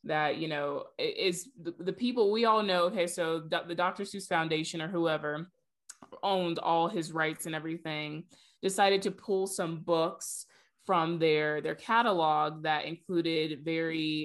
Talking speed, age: 145 wpm, 20-39